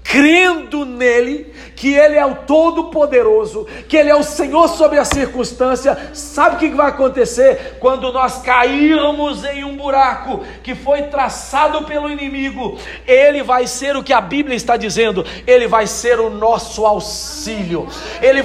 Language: Portuguese